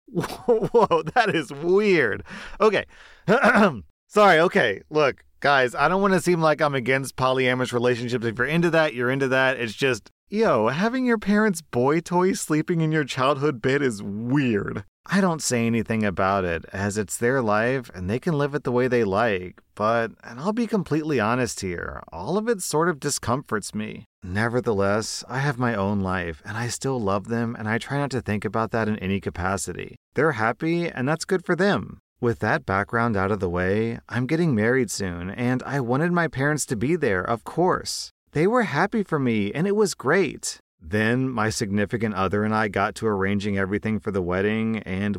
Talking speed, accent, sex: 195 wpm, American, male